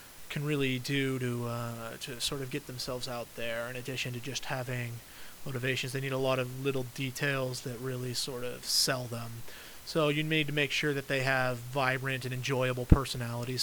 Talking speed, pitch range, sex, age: 195 wpm, 125-140 Hz, male, 30-49